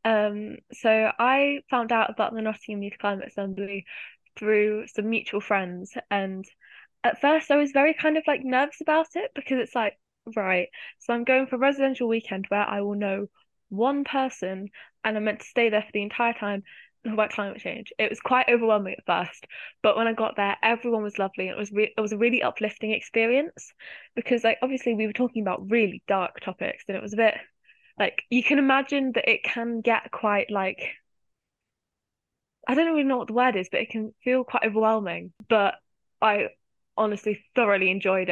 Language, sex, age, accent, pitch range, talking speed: English, female, 10-29, British, 205-245 Hz, 195 wpm